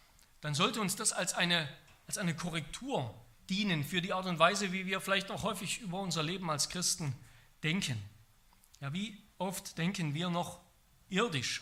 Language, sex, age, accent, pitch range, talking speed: German, male, 40-59, German, 140-200 Hz, 160 wpm